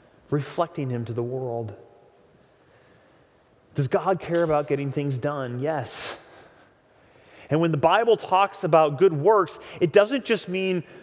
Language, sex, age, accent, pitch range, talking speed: English, male, 30-49, American, 140-190 Hz, 135 wpm